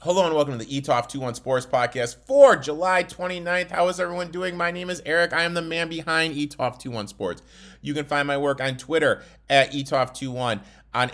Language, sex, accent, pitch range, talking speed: English, male, American, 130-170 Hz, 195 wpm